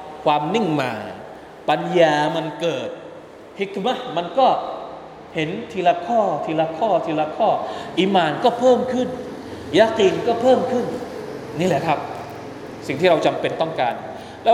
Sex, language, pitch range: male, Thai, 155-225 Hz